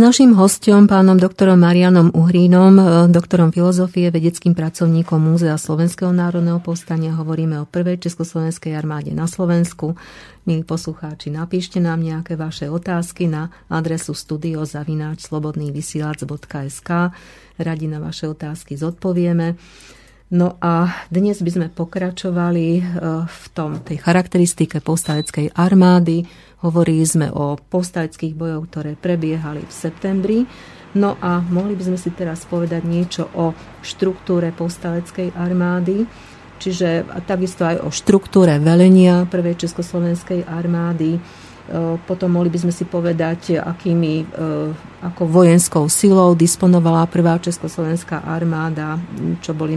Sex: female